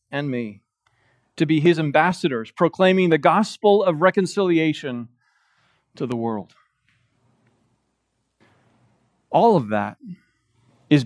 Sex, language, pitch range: male, English, 130-190 Hz